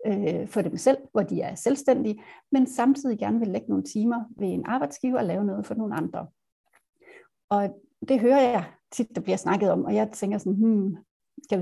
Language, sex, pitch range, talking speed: Danish, female, 200-245 Hz, 195 wpm